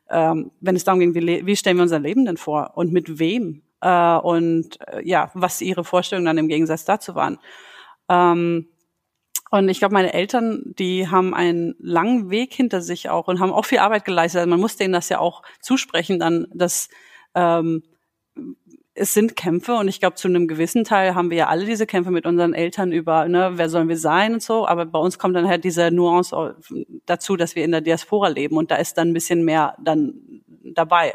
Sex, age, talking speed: female, 30-49, 210 wpm